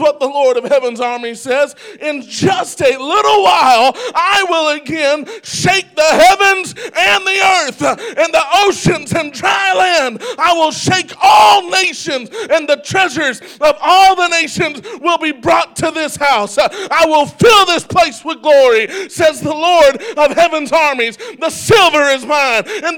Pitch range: 285-375 Hz